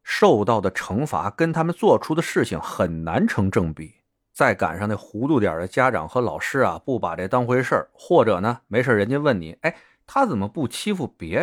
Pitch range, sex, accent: 95-160 Hz, male, native